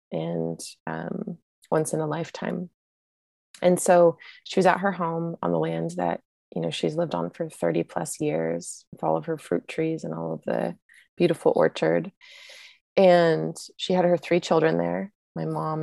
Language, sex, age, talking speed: English, female, 20-39, 180 wpm